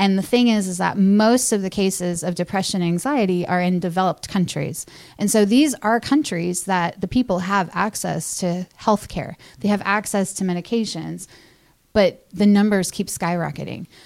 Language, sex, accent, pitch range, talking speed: English, female, American, 175-205 Hz, 175 wpm